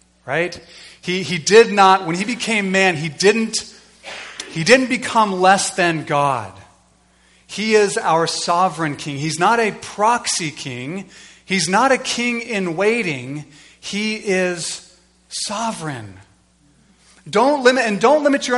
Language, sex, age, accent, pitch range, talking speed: English, male, 30-49, American, 145-200 Hz, 135 wpm